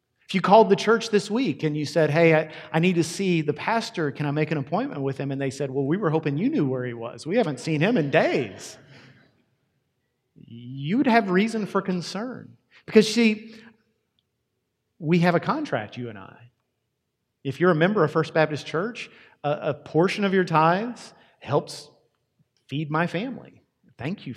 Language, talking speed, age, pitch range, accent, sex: English, 190 wpm, 40-59, 125-170 Hz, American, male